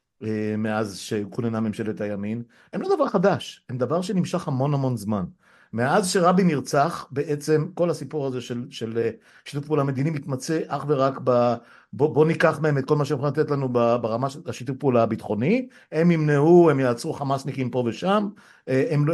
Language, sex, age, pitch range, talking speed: Hebrew, male, 50-69, 120-165 Hz, 170 wpm